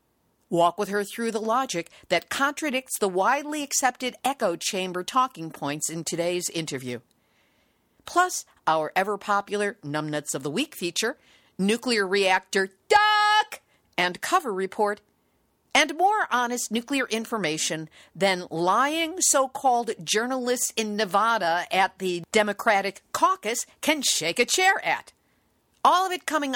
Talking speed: 130 wpm